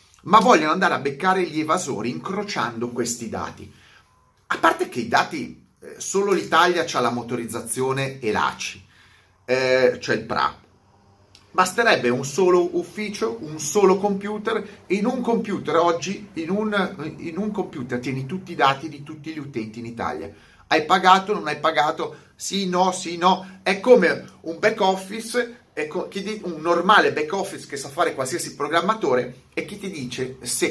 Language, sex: Italian, male